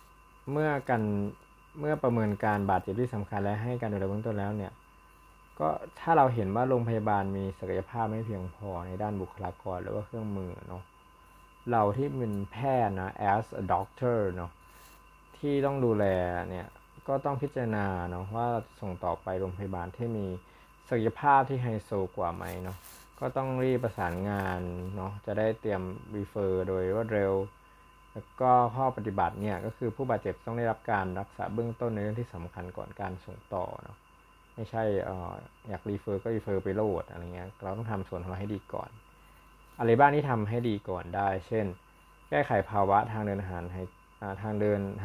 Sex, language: male, Thai